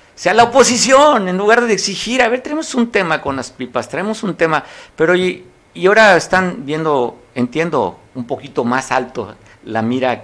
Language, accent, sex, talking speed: Spanish, Mexican, male, 190 wpm